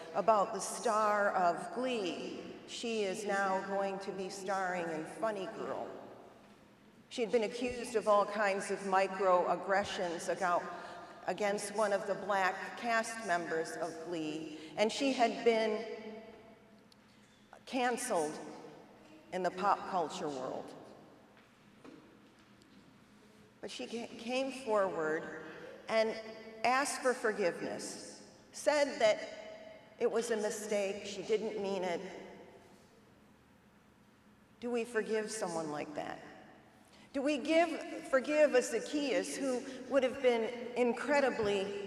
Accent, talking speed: American, 110 wpm